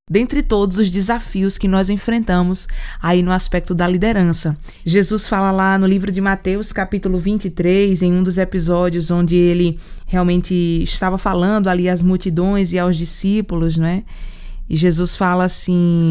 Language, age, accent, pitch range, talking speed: Portuguese, 20-39, Brazilian, 180-210 Hz, 155 wpm